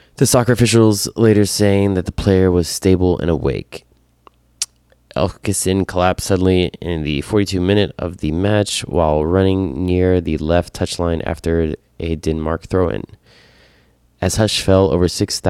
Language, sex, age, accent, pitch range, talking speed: English, male, 20-39, American, 80-100 Hz, 145 wpm